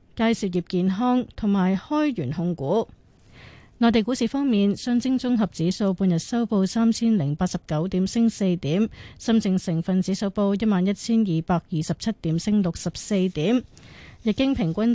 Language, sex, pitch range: Chinese, female, 180-230 Hz